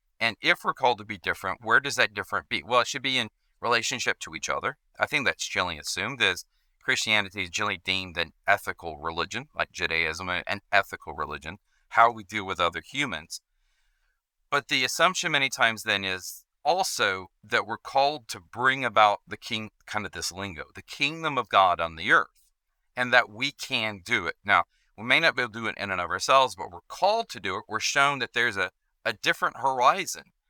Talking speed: 205 wpm